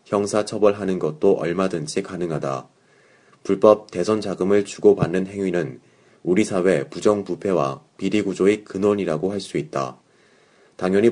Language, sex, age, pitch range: Korean, male, 30-49, 90-105 Hz